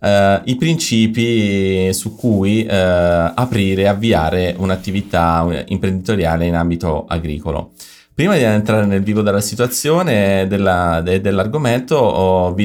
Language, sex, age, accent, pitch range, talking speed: Italian, male, 30-49, native, 85-100 Hz, 105 wpm